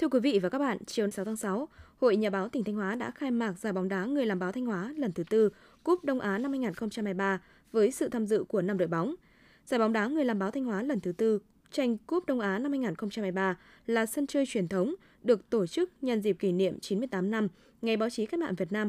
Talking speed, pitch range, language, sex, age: 255 wpm, 195-255 Hz, Vietnamese, female, 20-39